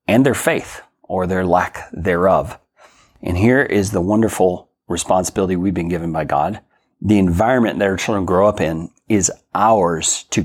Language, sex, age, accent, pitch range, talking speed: English, male, 40-59, American, 85-105 Hz, 165 wpm